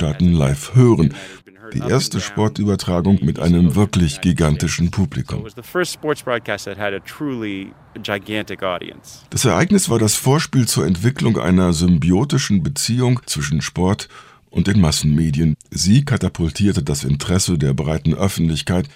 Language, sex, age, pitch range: German, male, 50-69, 85-115 Hz